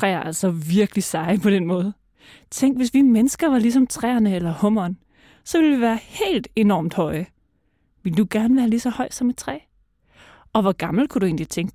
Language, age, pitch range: Danish, 30-49, 185-235 Hz